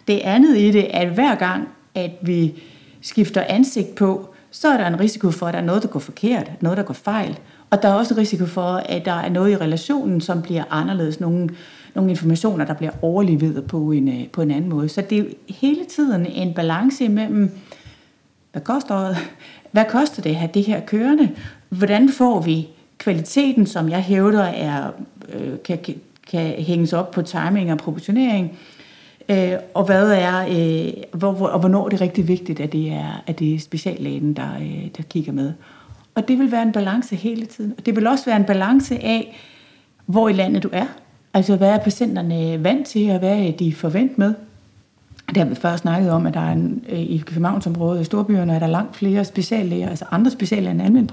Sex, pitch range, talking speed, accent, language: female, 170-210 Hz, 195 wpm, native, Danish